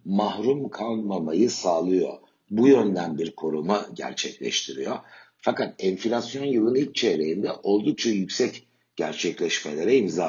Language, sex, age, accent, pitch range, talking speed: Turkish, male, 60-79, native, 100-120 Hz, 100 wpm